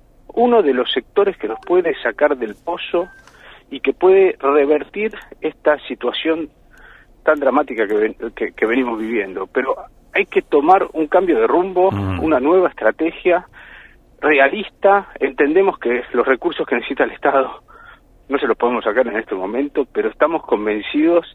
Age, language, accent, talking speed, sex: 50-69, Spanish, Argentinian, 150 wpm, male